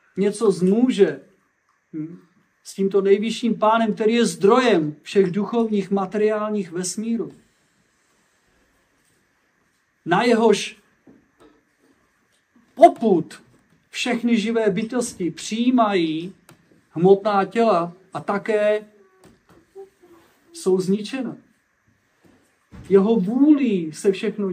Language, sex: Czech, male